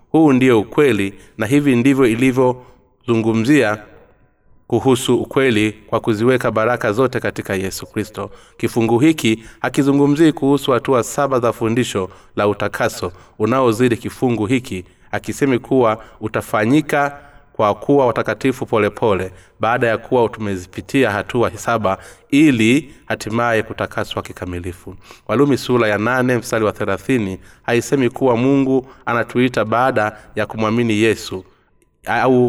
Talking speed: 120 wpm